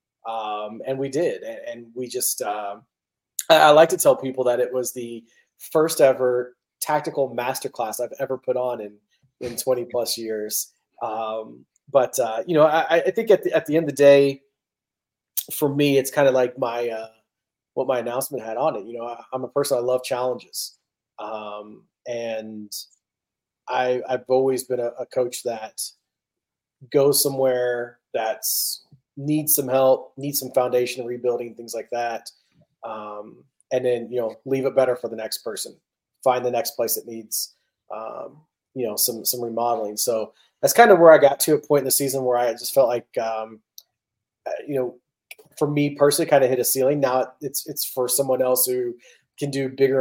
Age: 30-49